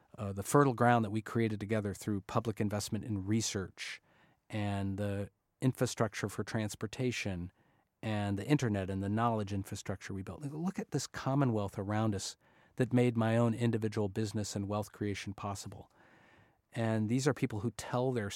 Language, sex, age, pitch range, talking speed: English, male, 40-59, 100-120 Hz, 165 wpm